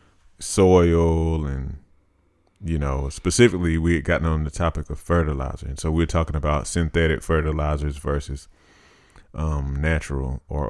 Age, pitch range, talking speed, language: 30-49, 75-85 Hz, 135 wpm, English